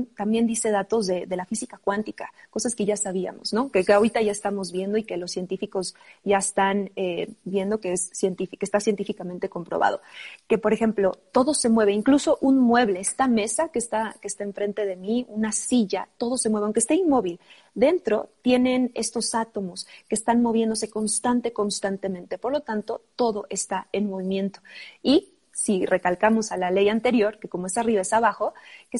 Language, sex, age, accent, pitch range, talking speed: Spanish, female, 30-49, Mexican, 200-245 Hz, 185 wpm